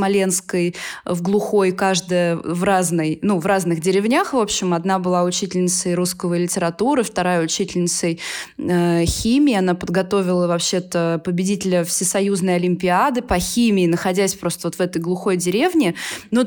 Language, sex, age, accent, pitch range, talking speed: Russian, female, 20-39, native, 180-215 Hz, 130 wpm